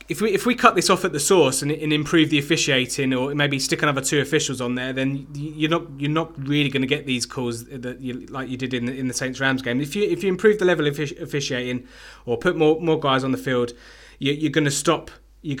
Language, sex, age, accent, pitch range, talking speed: English, male, 20-39, British, 125-145 Hz, 265 wpm